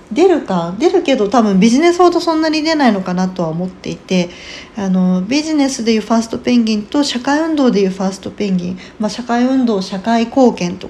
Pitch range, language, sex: 190-265 Hz, Japanese, female